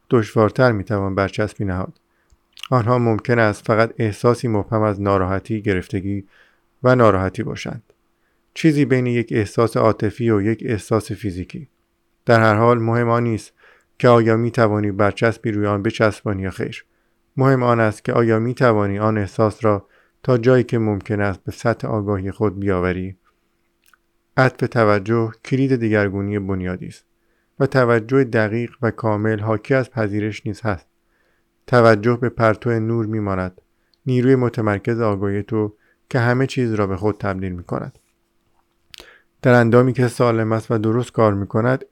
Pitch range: 105-120 Hz